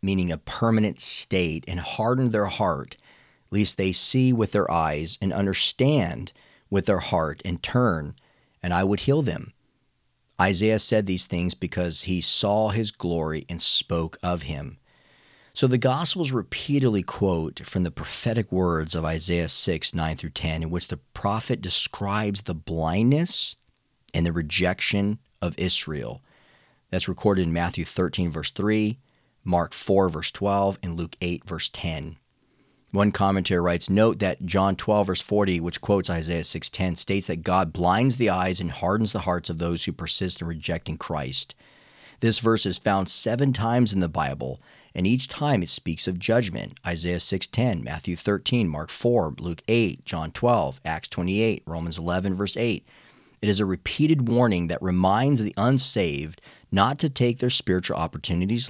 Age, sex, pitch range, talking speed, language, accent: 40-59, male, 85-110 Hz, 165 wpm, English, American